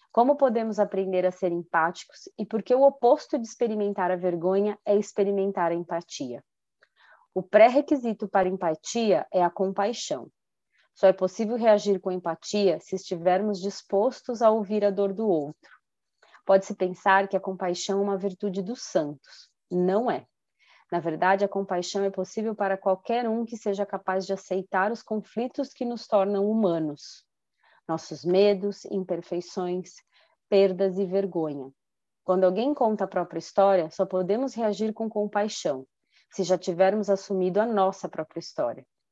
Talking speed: 150 wpm